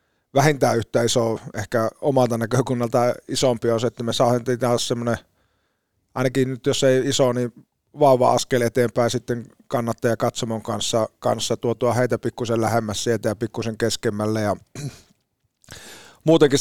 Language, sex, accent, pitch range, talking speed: Finnish, male, native, 110-125 Hz, 130 wpm